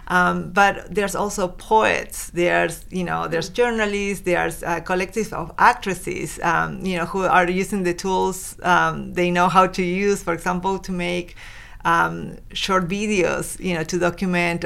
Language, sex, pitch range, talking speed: English, female, 170-185 Hz, 165 wpm